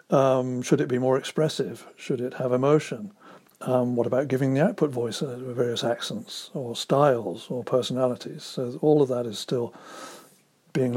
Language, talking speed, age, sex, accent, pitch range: English, 170 wpm, 60-79, male, British, 125-160 Hz